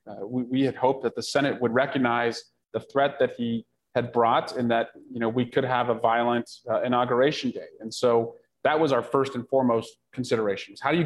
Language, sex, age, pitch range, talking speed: English, male, 30-49, 115-135 Hz, 215 wpm